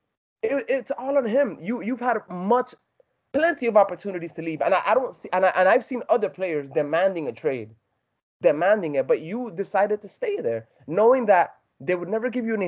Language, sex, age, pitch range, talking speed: English, male, 20-39, 165-255 Hz, 215 wpm